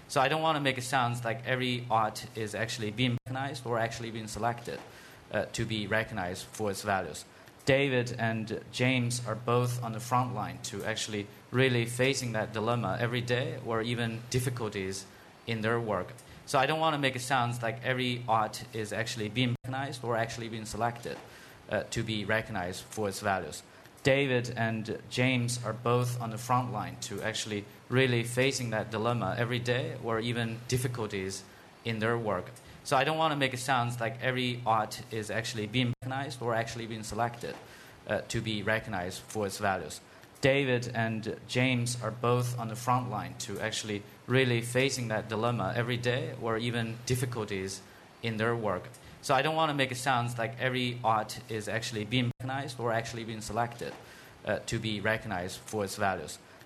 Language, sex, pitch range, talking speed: English, male, 110-125 Hz, 180 wpm